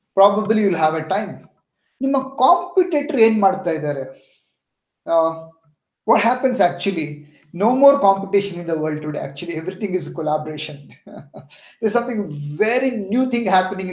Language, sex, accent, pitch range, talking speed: Kannada, male, native, 165-220 Hz, 140 wpm